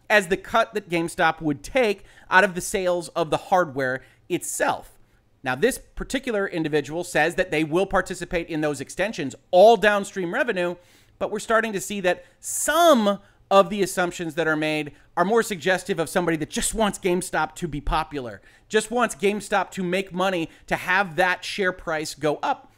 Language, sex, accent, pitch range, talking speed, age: English, male, American, 155-200 Hz, 180 wpm, 30-49